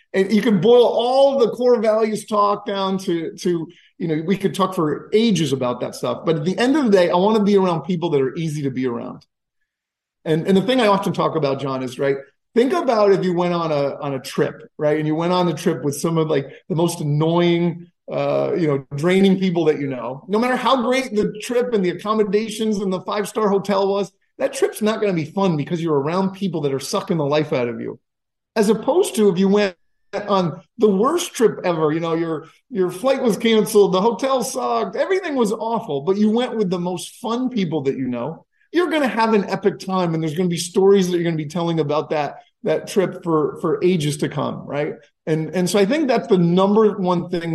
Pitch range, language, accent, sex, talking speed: 155-210 Hz, English, American, male, 240 wpm